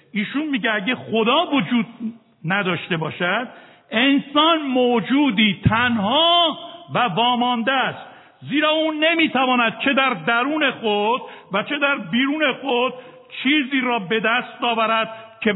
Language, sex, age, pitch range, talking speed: Persian, male, 60-79, 205-270 Hz, 120 wpm